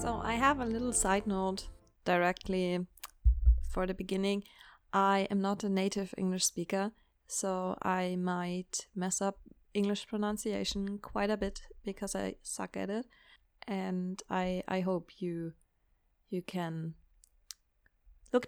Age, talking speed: 20-39, 135 wpm